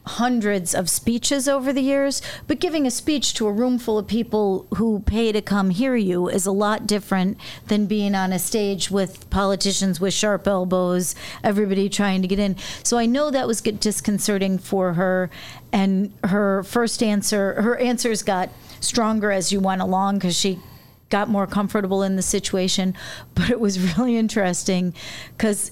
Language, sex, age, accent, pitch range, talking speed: English, female, 40-59, American, 190-220 Hz, 175 wpm